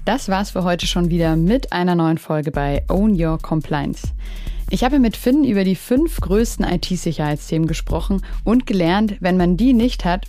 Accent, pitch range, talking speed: German, 160-190 Hz, 180 wpm